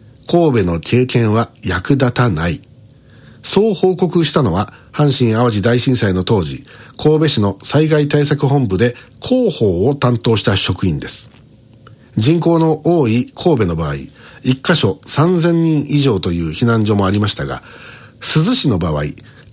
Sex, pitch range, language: male, 115-160 Hz, Japanese